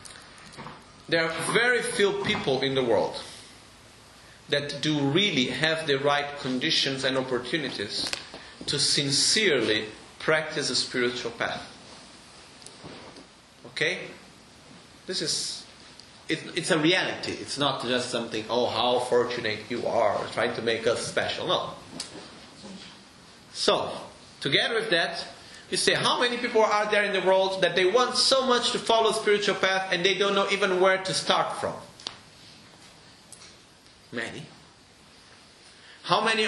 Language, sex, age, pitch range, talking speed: Italian, male, 40-59, 135-195 Hz, 130 wpm